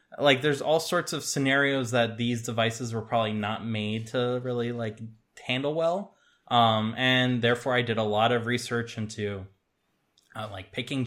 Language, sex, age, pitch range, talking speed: English, male, 20-39, 110-130 Hz, 170 wpm